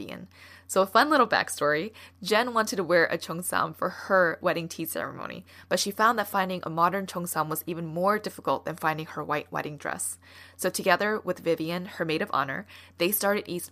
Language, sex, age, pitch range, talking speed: English, female, 10-29, 160-200 Hz, 195 wpm